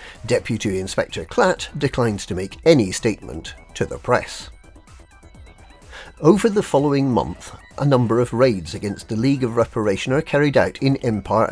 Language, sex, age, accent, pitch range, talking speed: English, male, 50-69, British, 105-145 Hz, 150 wpm